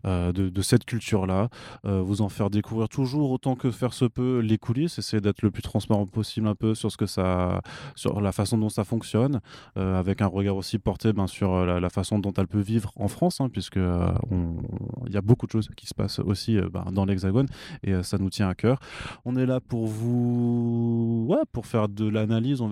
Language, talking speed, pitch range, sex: French, 225 wpm, 100-120 Hz, male